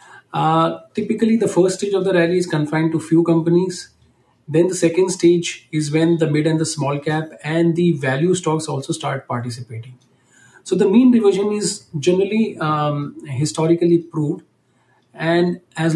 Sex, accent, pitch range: male, Indian, 140-170 Hz